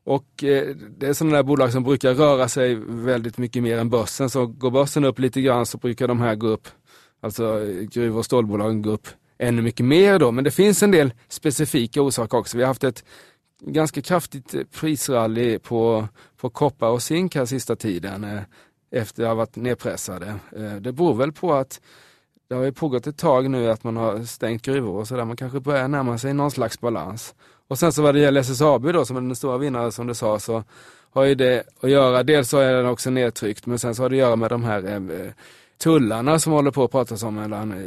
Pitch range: 115-140 Hz